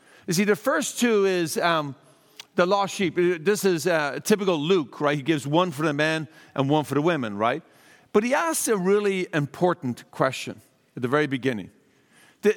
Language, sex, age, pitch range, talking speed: English, male, 50-69, 150-215 Hz, 195 wpm